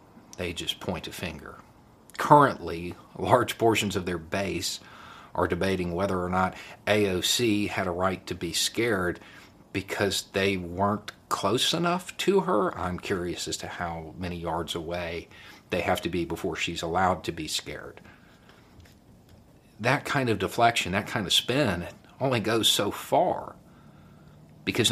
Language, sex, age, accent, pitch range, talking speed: English, male, 50-69, American, 90-115 Hz, 150 wpm